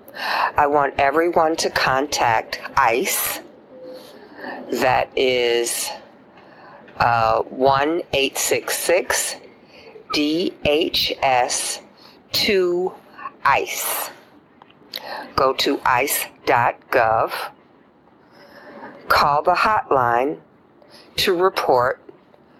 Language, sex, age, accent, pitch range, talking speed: English, female, 50-69, American, 145-245 Hz, 50 wpm